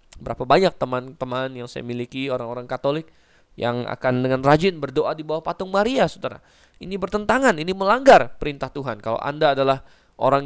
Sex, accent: male, native